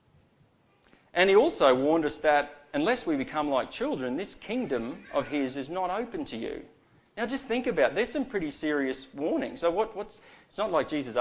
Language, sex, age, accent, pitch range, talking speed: English, male, 30-49, Australian, 130-190 Hz, 195 wpm